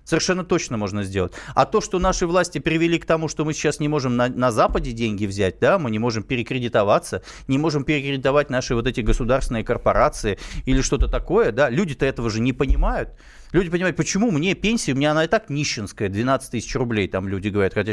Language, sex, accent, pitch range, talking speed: Russian, male, native, 120-175 Hz, 210 wpm